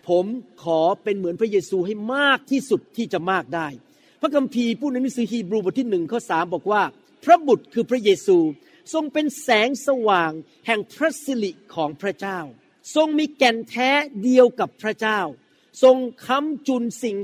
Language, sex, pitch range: Thai, male, 190-265 Hz